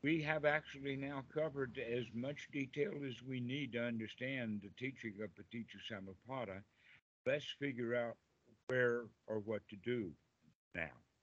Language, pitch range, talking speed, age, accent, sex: English, 110-130 Hz, 150 wpm, 60-79, American, male